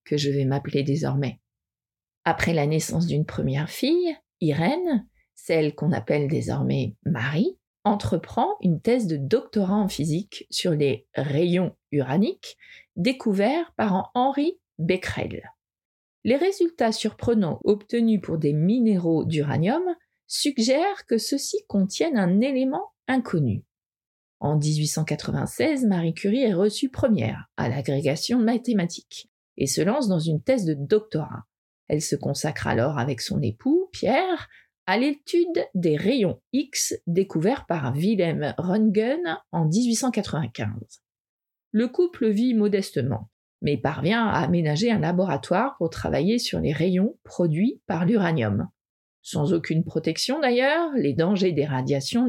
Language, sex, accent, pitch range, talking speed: French, female, French, 150-235 Hz, 125 wpm